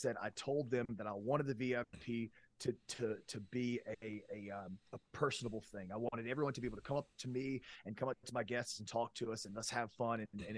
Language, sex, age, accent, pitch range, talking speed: English, male, 30-49, American, 115-135 Hz, 265 wpm